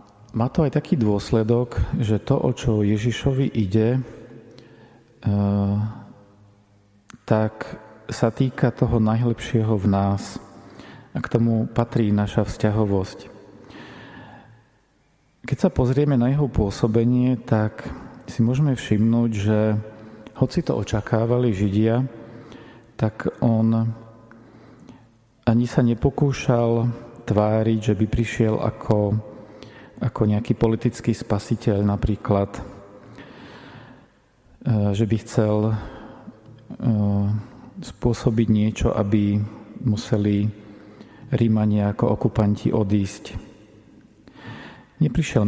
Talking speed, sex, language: 90 wpm, male, Slovak